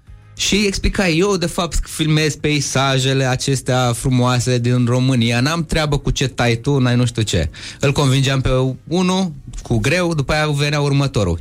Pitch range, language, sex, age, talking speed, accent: 105-150 Hz, Romanian, male, 20-39, 165 wpm, native